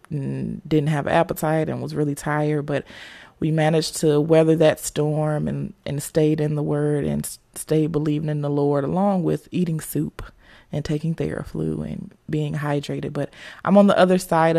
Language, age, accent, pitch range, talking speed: English, 20-39, American, 150-170 Hz, 175 wpm